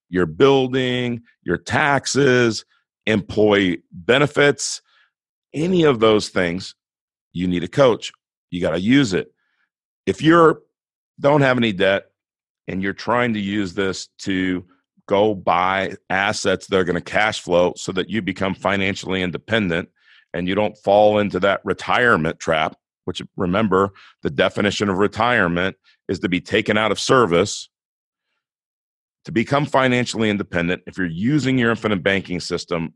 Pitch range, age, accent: 95-120 Hz, 40-59, American